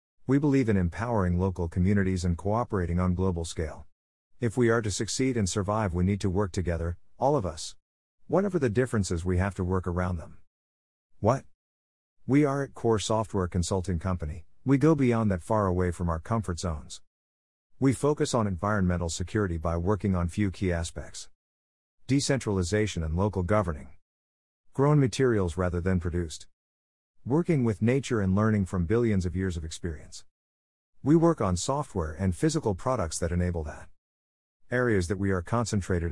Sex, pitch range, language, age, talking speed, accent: male, 85-115 Hz, English, 50-69, 165 wpm, American